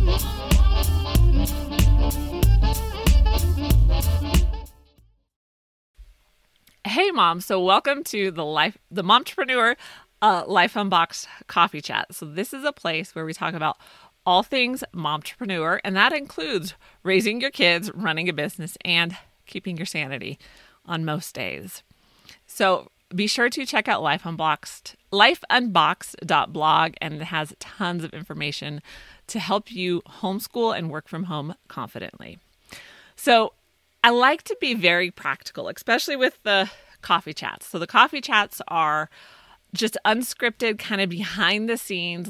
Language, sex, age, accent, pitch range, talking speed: English, female, 30-49, American, 155-205 Hz, 130 wpm